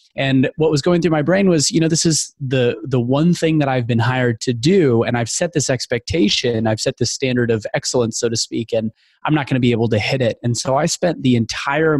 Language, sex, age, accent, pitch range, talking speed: English, male, 20-39, American, 120-145 Hz, 260 wpm